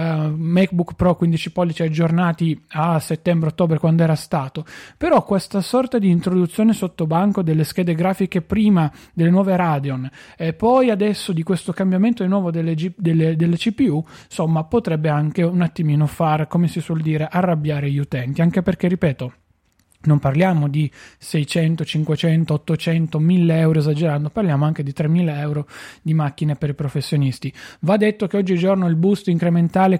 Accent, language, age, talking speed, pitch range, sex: native, Italian, 30-49, 155 wpm, 160-195 Hz, male